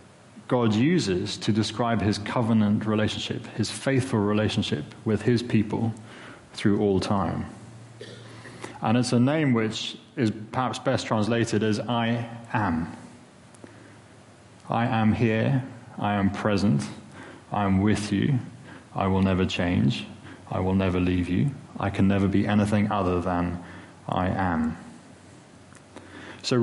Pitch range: 100-120 Hz